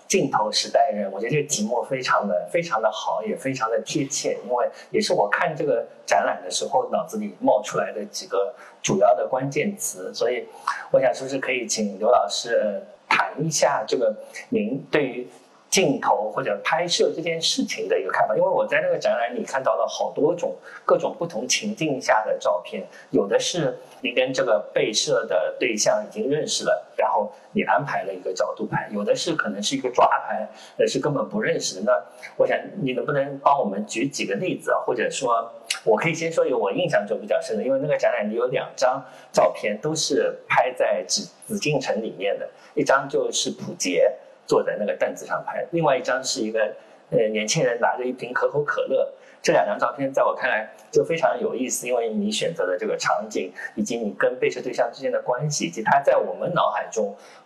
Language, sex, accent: Chinese, male, native